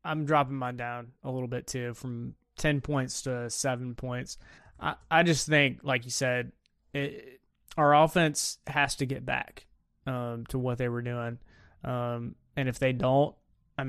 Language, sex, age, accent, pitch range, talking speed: English, male, 20-39, American, 125-150 Hz, 175 wpm